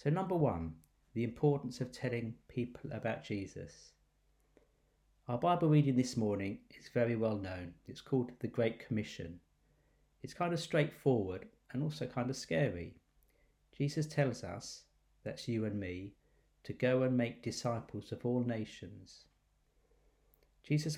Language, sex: English, male